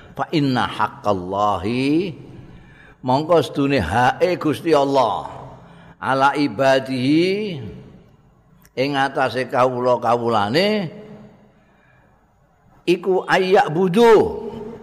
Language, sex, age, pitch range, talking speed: Indonesian, male, 50-69, 110-160 Hz, 70 wpm